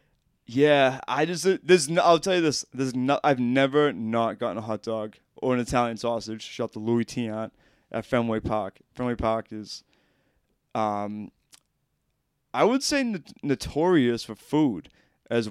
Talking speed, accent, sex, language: 165 wpm, American, male, English